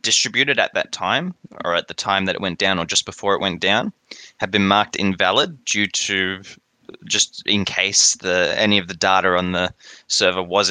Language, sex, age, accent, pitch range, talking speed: English, male, 20-39, Australian, 95-115 Hz, 200 wpm